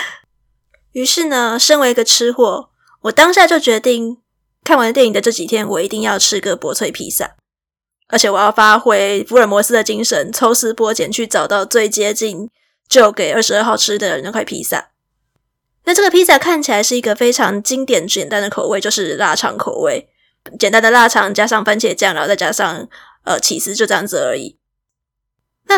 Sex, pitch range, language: female, 210-285 Hz, Chinese